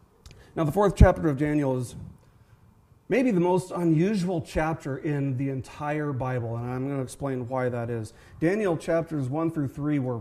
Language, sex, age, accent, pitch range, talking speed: English, male, 40-59, American, 130-155 Hz, 175 wpm